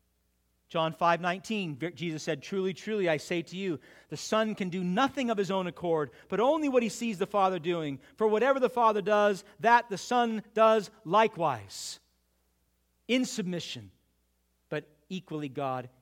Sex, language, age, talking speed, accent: male, English, 40-59, 160 wpm, American